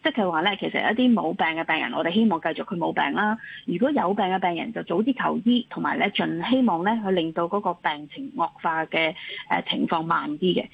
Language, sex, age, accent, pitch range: Chinese, female, 30-49, native, 180-255 Hz